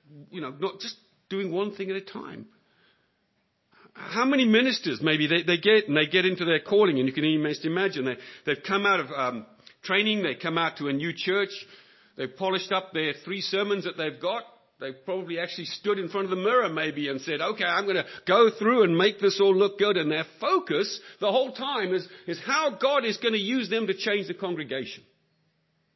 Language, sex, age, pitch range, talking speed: English, male, 50-69, 155-220 Hz, 220 wpm